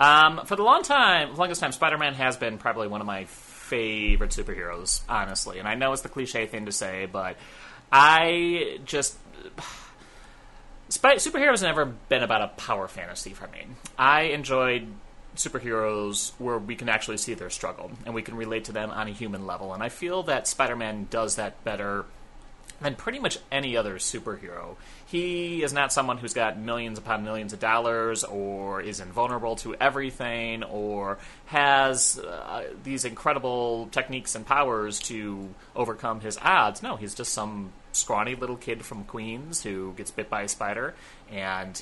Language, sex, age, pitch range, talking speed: English, male, 30-49, 105-135 Hz, 170 wpm